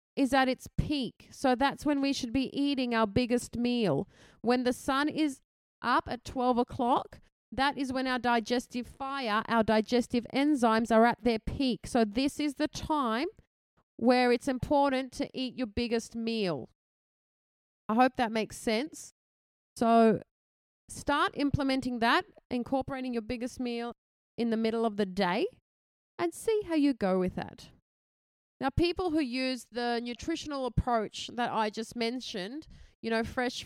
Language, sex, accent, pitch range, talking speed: English, female, Australian, 230-280 Hz, 155 wpm